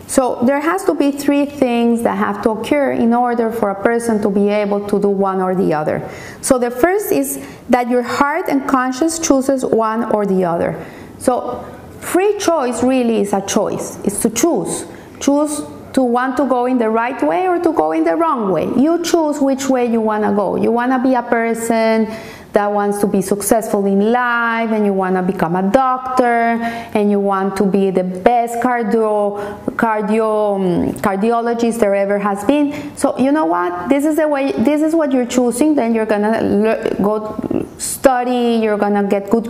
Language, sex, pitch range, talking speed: English, female, 210-275 Hz, 195 wpm